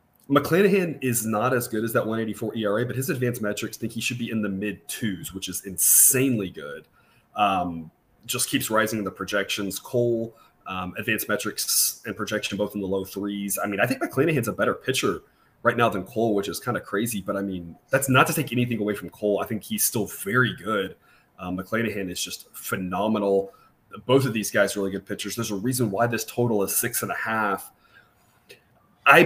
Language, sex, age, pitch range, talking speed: English, male, 30-49, 100-125 Hz, 210 wpm